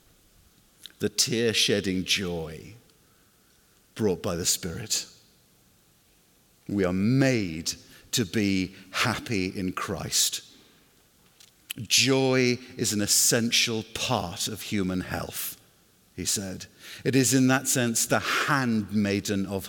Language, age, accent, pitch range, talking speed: English, 50-69, British, 95-130 Hz, 100 wpm